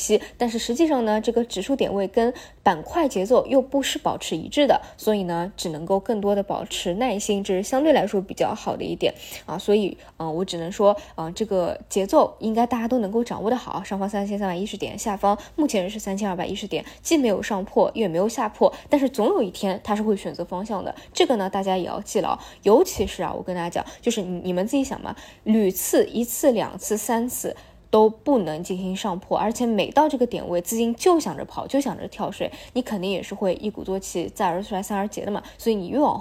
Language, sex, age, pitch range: Chinese, female, 20-39, 190-240 Hz